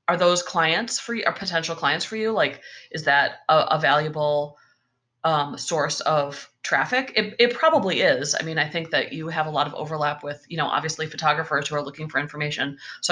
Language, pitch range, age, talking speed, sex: English, 145-180 Hz, 30-49, 210 wpm, female